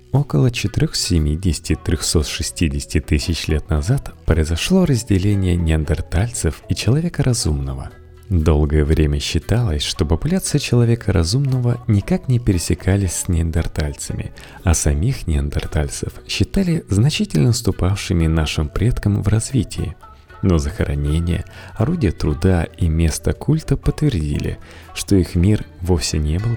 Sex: male